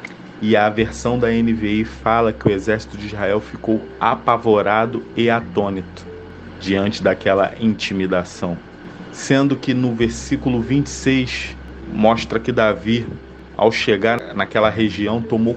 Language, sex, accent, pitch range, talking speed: Portuguese, male, Brazilian, 110-140 Hz, 120 wpm